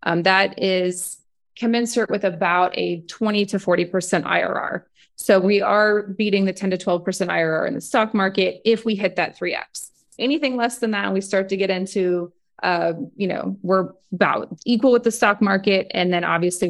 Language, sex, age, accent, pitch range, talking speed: English, female, 20-39, American, 180-215 Hz, 185 wpm